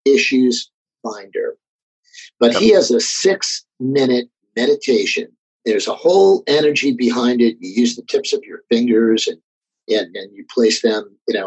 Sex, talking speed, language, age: male, 145 wpm, English, 50-69